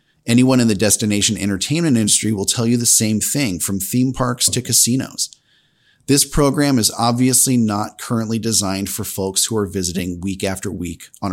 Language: English